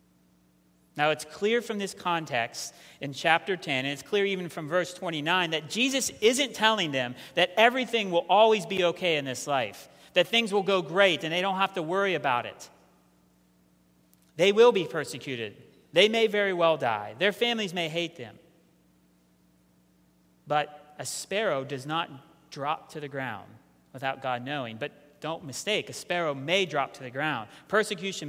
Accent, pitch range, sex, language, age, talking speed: American, 130-190 Hz, male, English, 30-49, 170 wpm